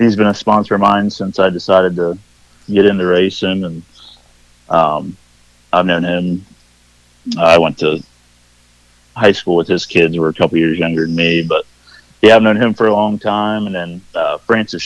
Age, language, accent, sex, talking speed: 30-49, English, American, male, 195 wpm